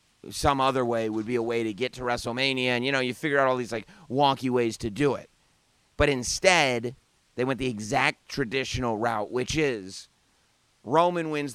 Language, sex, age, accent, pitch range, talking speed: English, male, 30-49, American, 115-140 Hz, 190 wpm